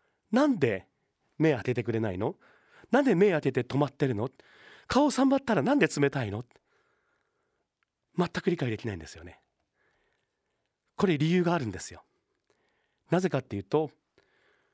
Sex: male